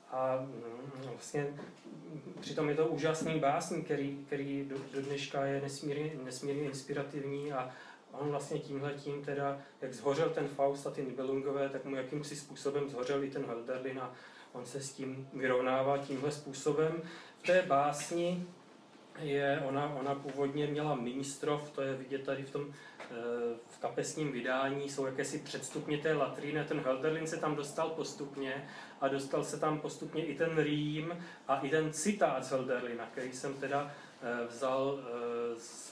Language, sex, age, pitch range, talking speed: Czech, male, 20-39, 130-145 Hz, 150 wpm